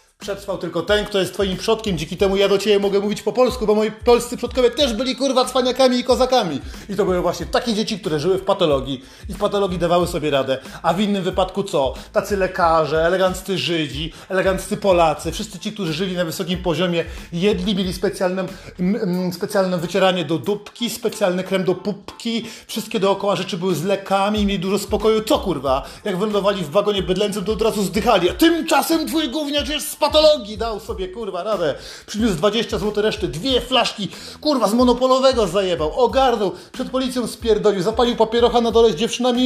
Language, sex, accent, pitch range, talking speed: Polish, male, native, 190-245 Hz, 185 wpm